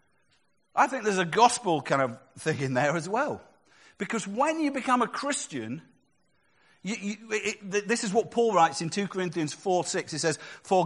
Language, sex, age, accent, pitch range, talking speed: English, male, 50-69, British, 150-215 Hz, 190 wpm